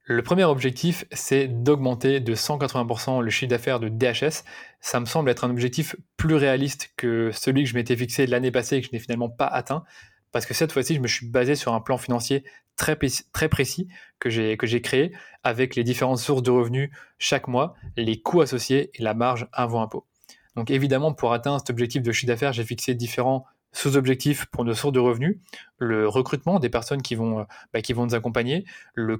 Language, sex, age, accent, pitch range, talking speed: French, male, 20-39, French, 120-145 Hz, 210 wpm